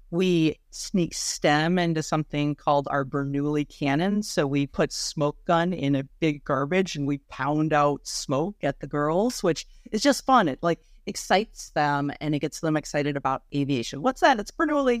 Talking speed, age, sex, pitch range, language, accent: 180 wpm, 40-59, female, 145-170 Hz, English, American